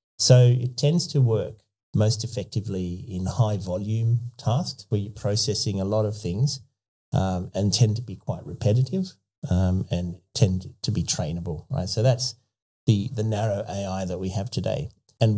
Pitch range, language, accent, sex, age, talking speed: 95-125 Hz, English, Australian, male, 40-59, 170 wpm